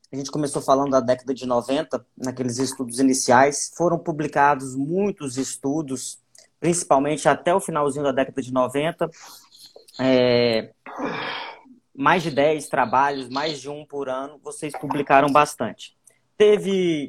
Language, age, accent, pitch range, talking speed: Portuguese, 20-39, Brazilian, 135-170 Hz, 125 wpm